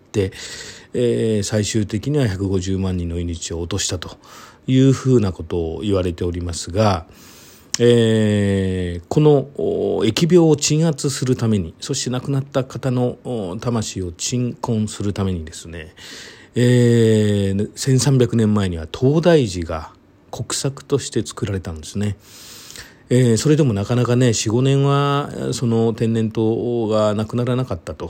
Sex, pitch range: male, 95-125 Hz